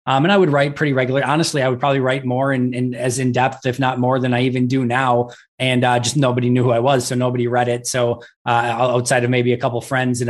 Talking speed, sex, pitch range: 275 wpm, male, 125-135 Hz